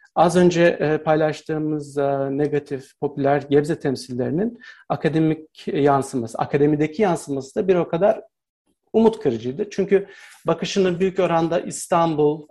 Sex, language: male, Turkish